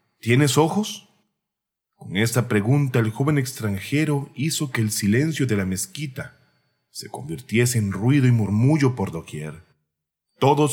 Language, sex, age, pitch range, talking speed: Spanish, male, 40-59, 100-140 Hz, 135 wpm